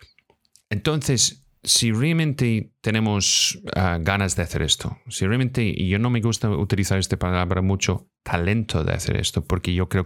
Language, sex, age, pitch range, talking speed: Spanish, male, 30-49, 90-115 Hz, 160 wpm